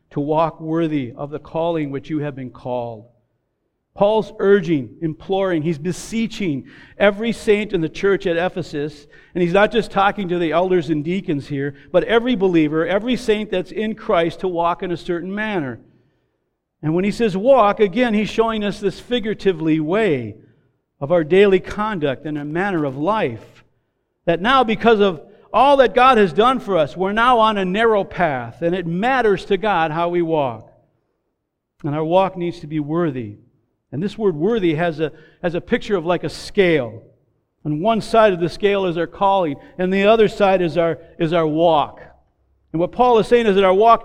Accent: American